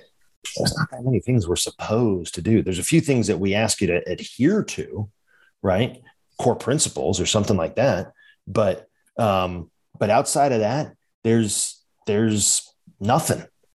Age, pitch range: 30-49, 105-140 Hz